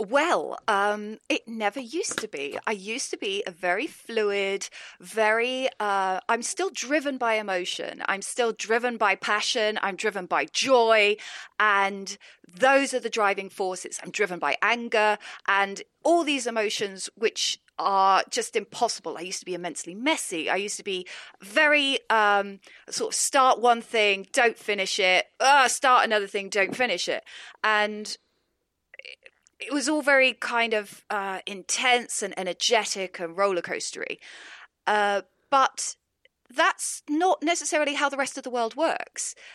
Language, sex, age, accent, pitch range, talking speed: English, female, 30-49, British, 195-255 Hz, 155 wpm